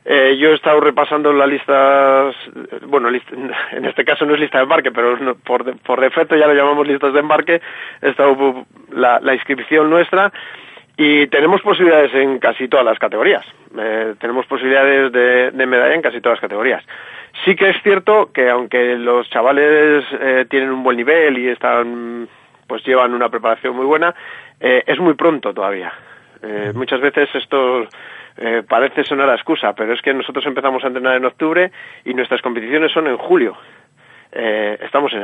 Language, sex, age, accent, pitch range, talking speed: Spanish, male, 30-49, Spanish, 125-150 Hz, 180 wpm